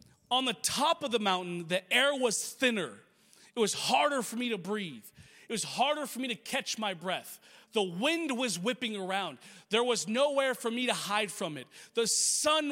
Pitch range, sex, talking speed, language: 165-235 Hz, male, 200 wpm, English